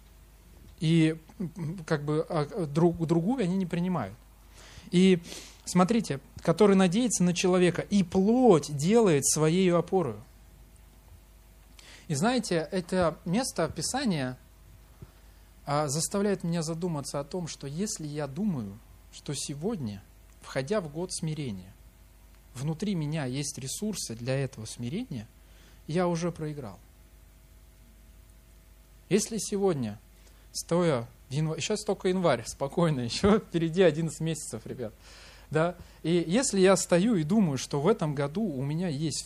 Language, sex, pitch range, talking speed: Russian, male, 115-185 Hz, 115 wpm